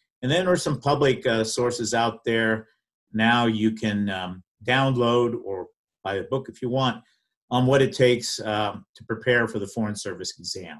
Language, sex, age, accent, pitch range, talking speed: English, male, 50-69, American, 105-125 Hz, 190 wpm